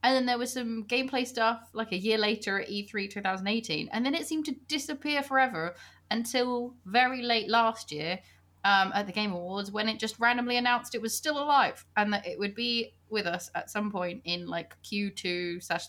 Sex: female